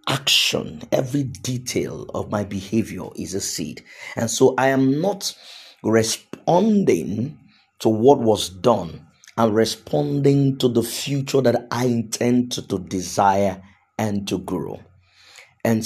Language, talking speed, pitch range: English, 130 wpm, 100-125 Hz